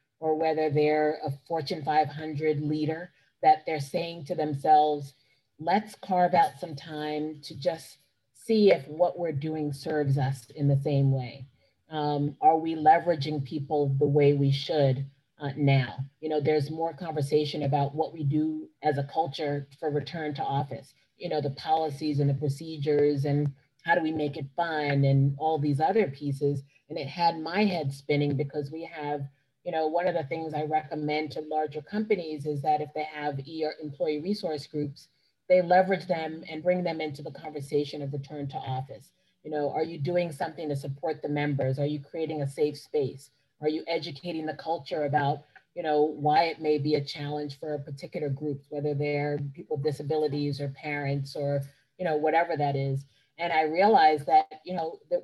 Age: 30-49